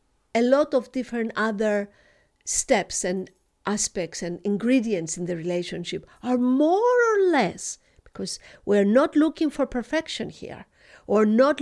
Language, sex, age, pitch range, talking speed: English, female, 50-69, 200-265 Hz, 135 wpm